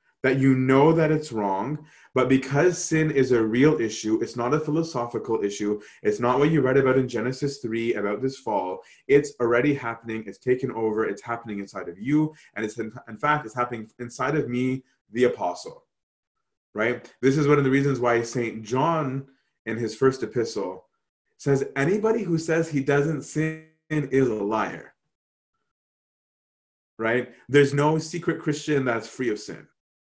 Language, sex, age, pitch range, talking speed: English, male, 30-49, 115-140 Hz, 170 wpm